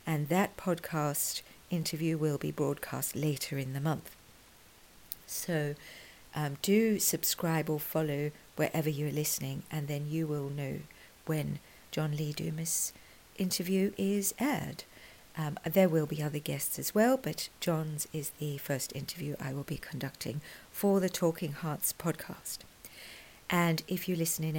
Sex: female